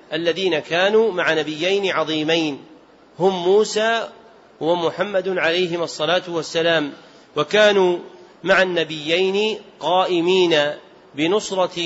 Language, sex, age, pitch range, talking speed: Arabic, male, 40-59, 160-195 Hz, 80 wpm